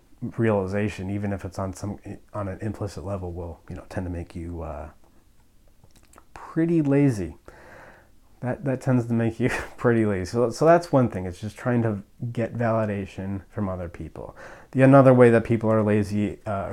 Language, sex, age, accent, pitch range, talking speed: English, male, 30-49, American, 95-115 Hz, 180 wpm